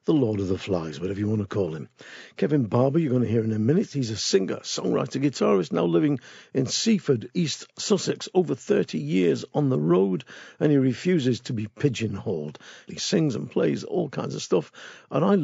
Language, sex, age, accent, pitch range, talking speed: English, male, 50-69, British, 110-160 Hz, 205 wpm